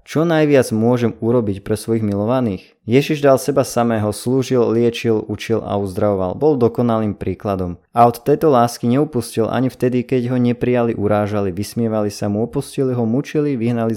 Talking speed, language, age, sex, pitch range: 160 wpm, Slovak, 20-39, male, 105-130 Hz